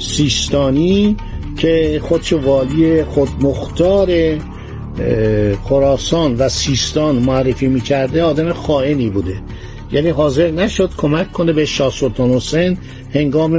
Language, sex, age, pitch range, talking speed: Persian, male, 60-79, 130-170 Hz, 100 wpm